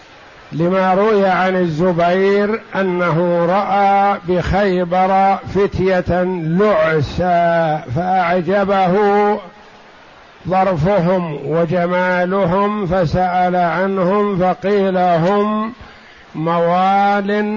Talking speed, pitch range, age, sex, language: 55 wpm, 165-190 Hz, 60-79, male, Arabic